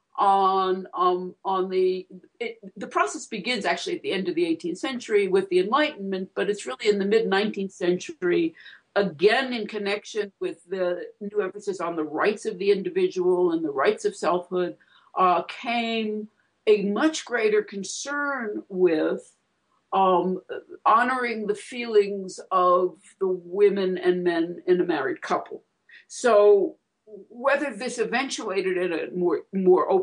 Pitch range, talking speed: 190-275 Hz, 140 wpm